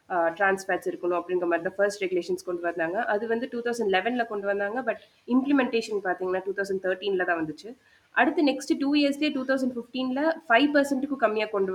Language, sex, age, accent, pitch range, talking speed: Tamil, female, 20-39, native, 185-250 Hz, 180 wpm